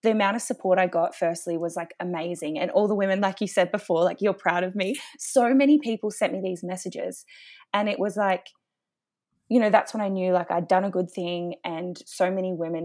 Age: 20-39